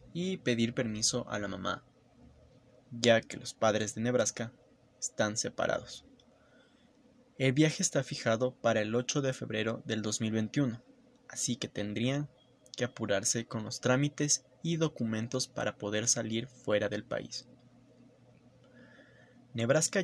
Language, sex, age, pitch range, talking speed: Spanish, male, 20-39, 115-130 Hz, 125 wpm